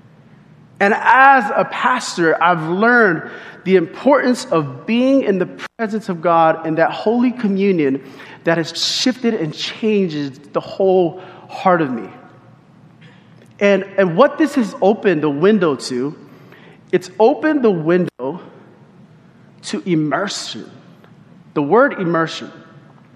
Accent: American